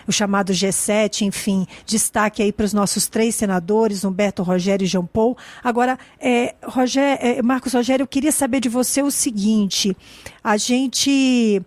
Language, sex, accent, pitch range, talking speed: Portuguese, female, Brazilian, 210-255 Hz, 145 wpm